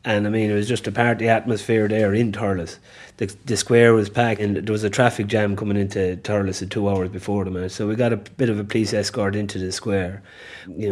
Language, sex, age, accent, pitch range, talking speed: English, male, 30-49, Irish, 100-110 Hz, 255 wpm